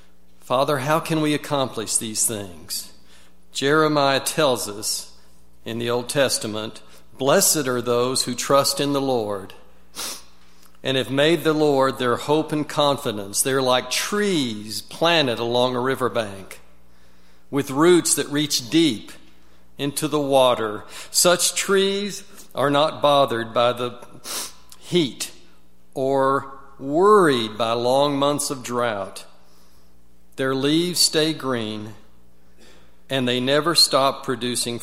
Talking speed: 120 wpm